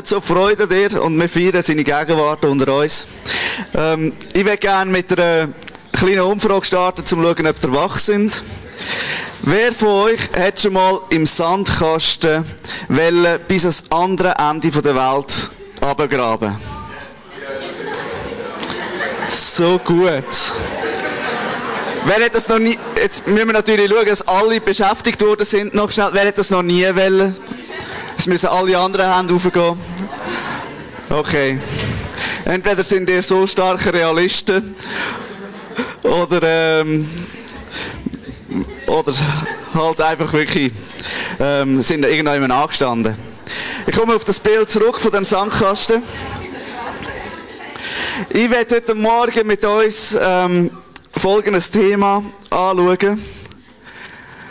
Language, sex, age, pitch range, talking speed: German, male, 20-39, 160-205 Hz, 120 wpm